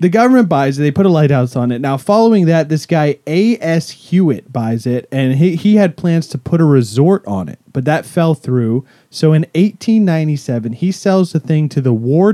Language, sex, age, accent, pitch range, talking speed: English, male, 30-49, American, 125-165 Hz, 215 wpm